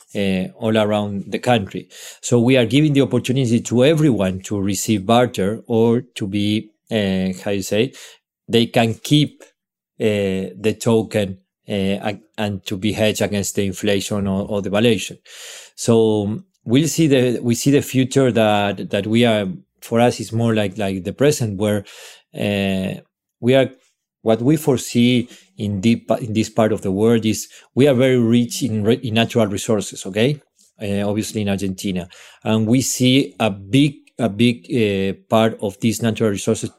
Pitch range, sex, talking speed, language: 100-125 Hz, male, 170 wpm, English